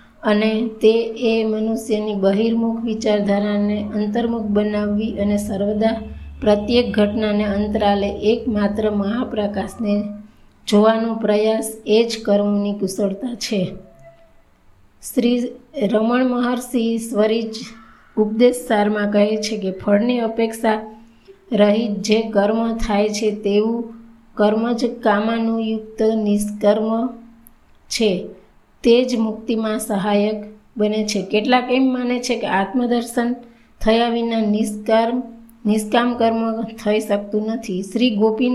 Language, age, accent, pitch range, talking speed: Gujarati, 20-39, native, 210-230 Hz, 45 wpm